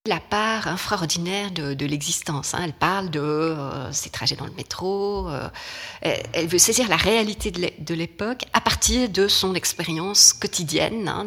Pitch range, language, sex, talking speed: 150-195 Hz, French, female, 180 wpm